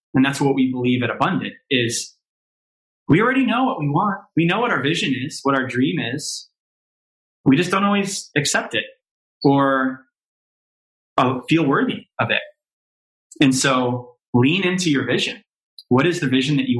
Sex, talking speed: male, 170 wpm